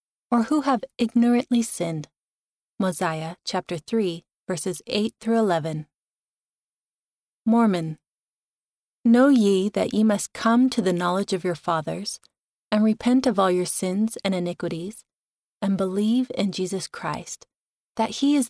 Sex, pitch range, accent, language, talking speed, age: female, 185-235 Hz, American, English, 135 wpm, 30-49